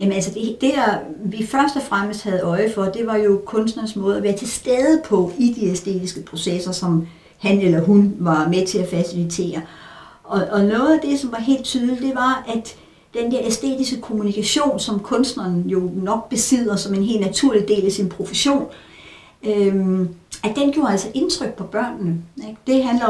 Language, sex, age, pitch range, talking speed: Danish, female, 60-79, 190-245 Hz, 195 wpm